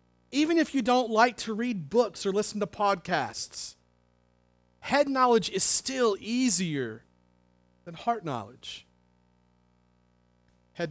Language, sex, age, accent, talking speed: English, male, 40-59, American, 115 wpm